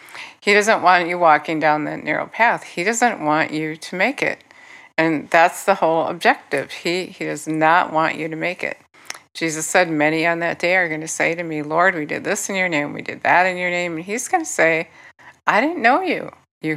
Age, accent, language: 60-79, American, English